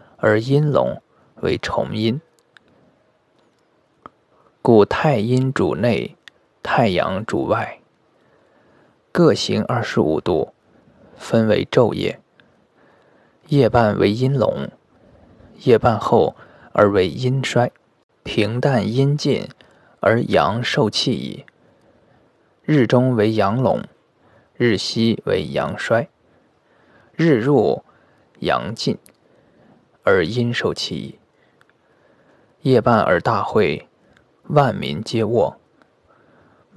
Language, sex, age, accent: Chinese, male, 20-39, native